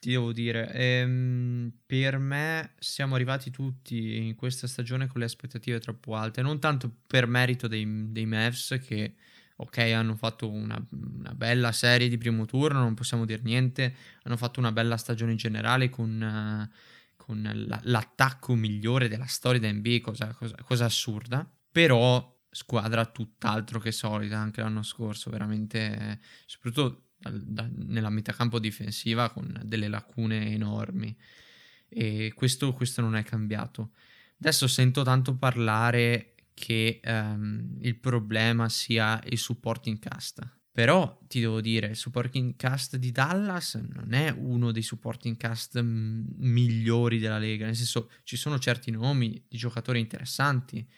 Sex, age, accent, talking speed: male, 20-39, native, 150 wpm